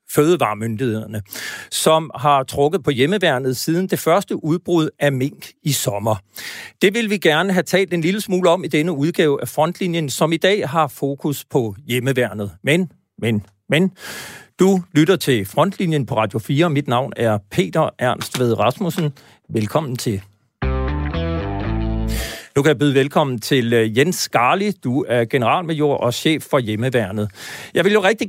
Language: Danish